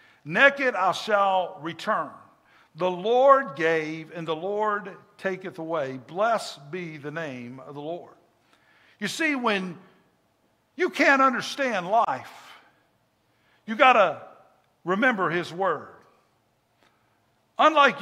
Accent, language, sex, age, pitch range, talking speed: American, English, male, 50-69, 185-250 Hz, 110 wpm